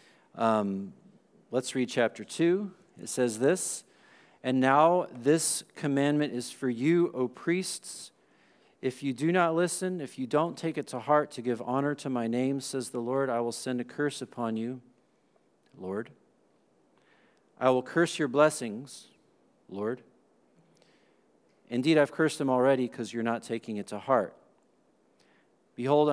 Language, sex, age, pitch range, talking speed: English, male, 40-59, 105-130 Hz, 150 wpm